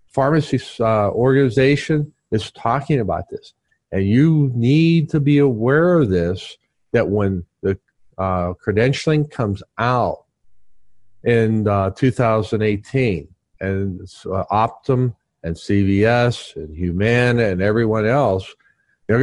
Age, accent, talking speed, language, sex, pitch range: 50-69, American, 110 wpm, English, male, 100-130 Hz